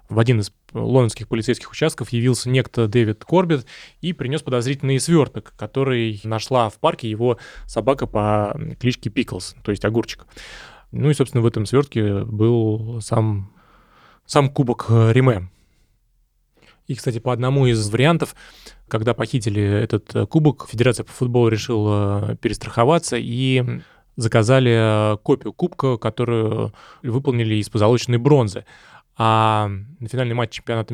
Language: Russian